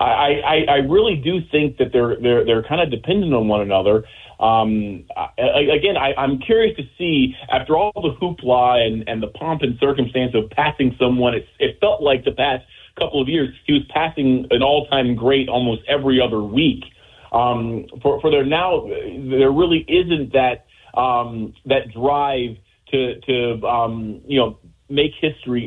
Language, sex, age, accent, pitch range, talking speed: English, male, 30-49, American, 115-145 Hz, 180 wpm